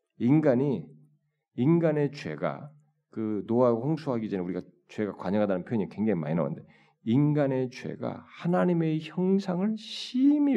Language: Korean